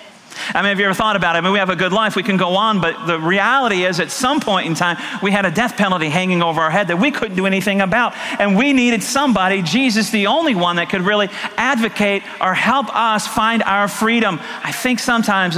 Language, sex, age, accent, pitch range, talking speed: English, male, 40-59, American, 170-215 Hz, 245 wpm